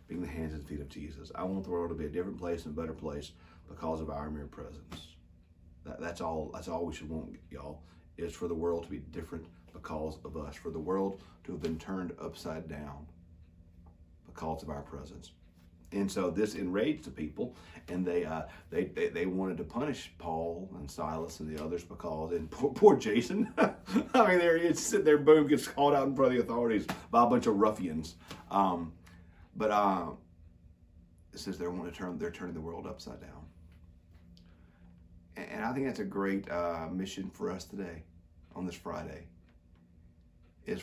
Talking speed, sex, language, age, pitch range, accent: 180 wpm, male, English, 40-59, 80-90 Hz, American